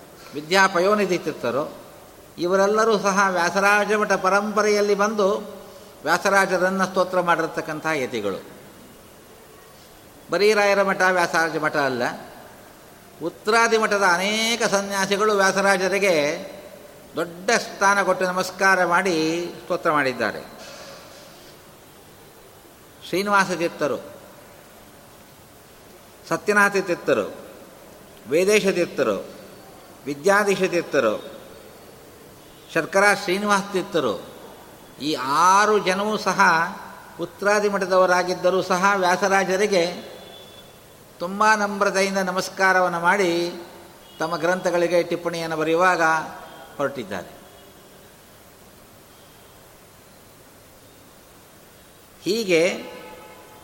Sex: male